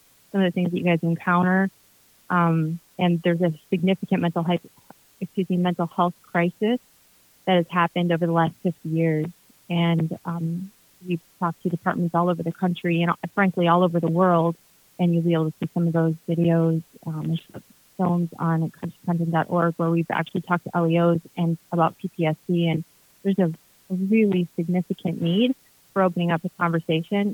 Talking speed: 170 wpm